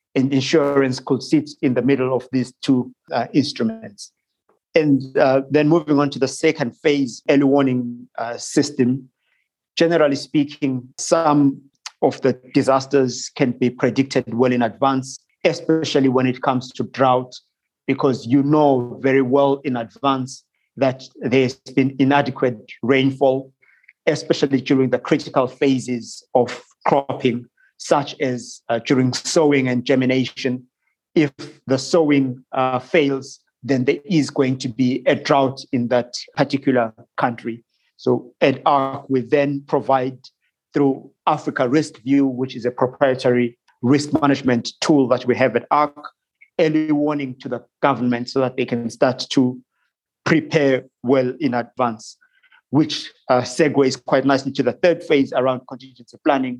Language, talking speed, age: English, 140 wpm, 50-69